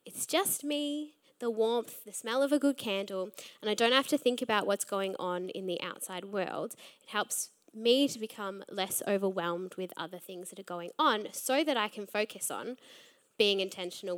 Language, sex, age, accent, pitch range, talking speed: English, female, 10-29, Australian, 210-280 Hz, 200 wpm